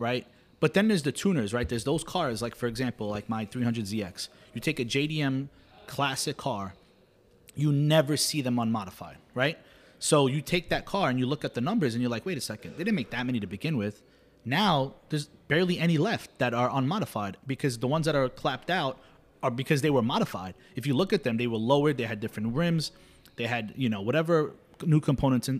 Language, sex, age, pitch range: English, male, 30-49, 110-150 Hz